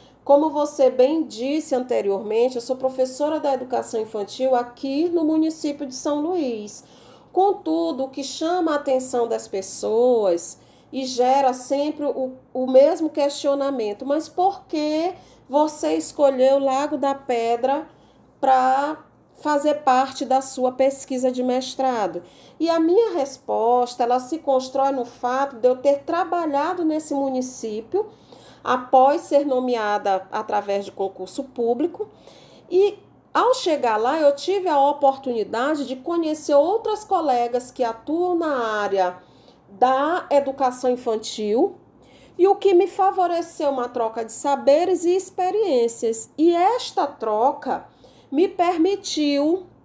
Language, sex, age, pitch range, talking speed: Portuguese, female, 40-59, 250-320 Hz, 130 wpm